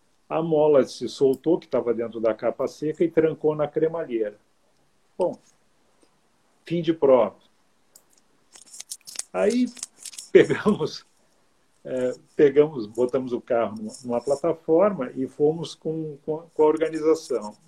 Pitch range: 130-195 Hz